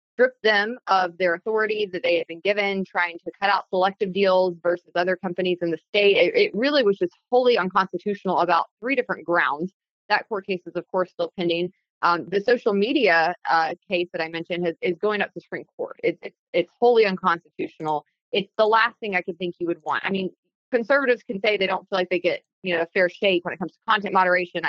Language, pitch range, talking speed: English, 170-200 Hz, 230 wpm